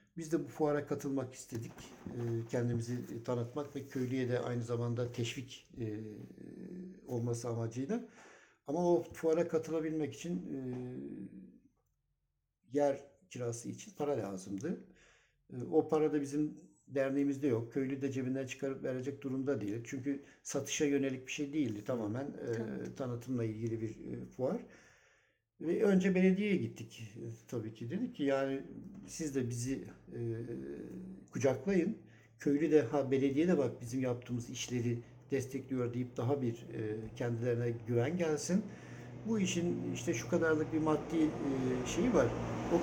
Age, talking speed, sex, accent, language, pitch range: 60-79, 130 wpm, male, native, Turkish, 120-155 Hz